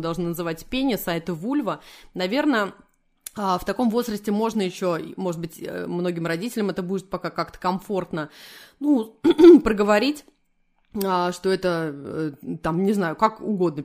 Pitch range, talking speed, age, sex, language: 170-220 Hz, 125 wpm, 20-39, female, Russian